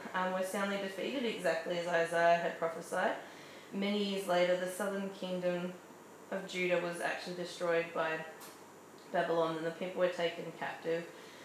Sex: female